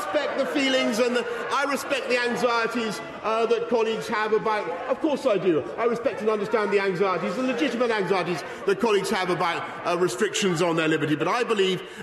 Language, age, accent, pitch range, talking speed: English, 40-59, British, 195-255 Hz, 200 wpm